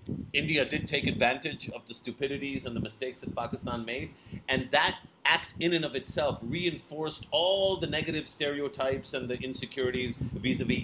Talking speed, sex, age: 160 wpm, male, 40-59